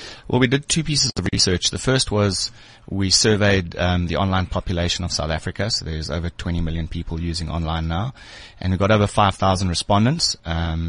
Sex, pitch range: male, 85-105 Hz